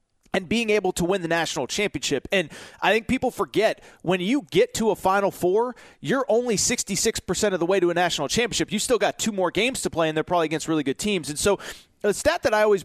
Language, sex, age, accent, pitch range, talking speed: English, male, 30-49, American, 160-215 Hz, 245 wpm